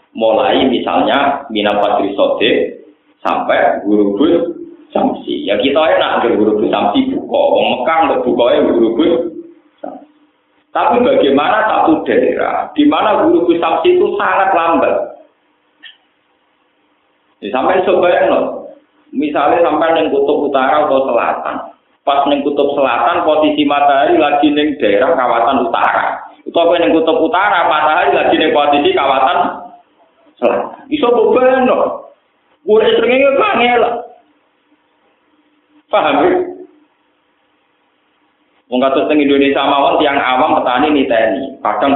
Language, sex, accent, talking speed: Indonesian, male, native, 105 wpm